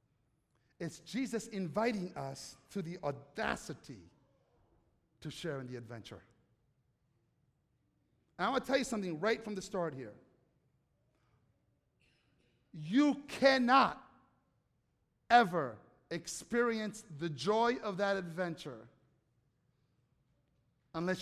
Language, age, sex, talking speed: English, 50-69, male, 95 wpm